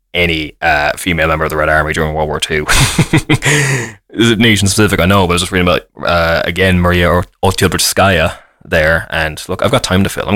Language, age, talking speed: English, 20-39, 210 wpm